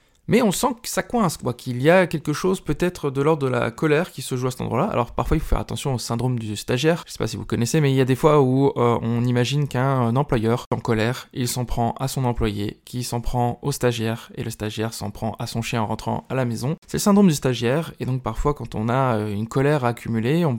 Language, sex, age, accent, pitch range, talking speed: French, male, 20-39, French, 120-155 Hz, 275 wpm